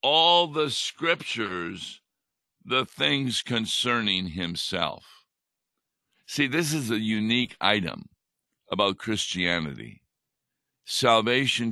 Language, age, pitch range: English, 60-79, 100-125 Hz